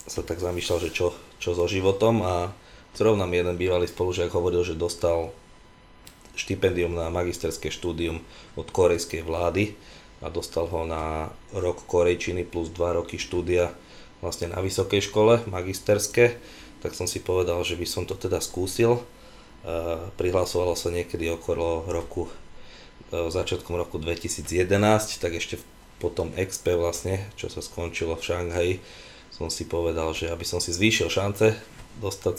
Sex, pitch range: male, 85-95 Hz